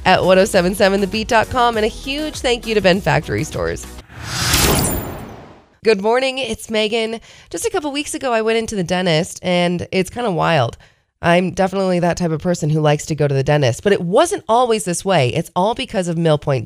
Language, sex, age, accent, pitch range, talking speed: English, female, 30-49, American, 160-225 Hz, 195 wpm